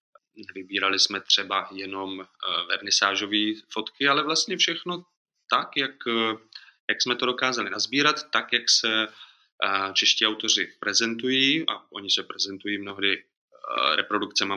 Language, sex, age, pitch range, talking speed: Czech, male, 20-39, 100-125 Hz, 115 wpm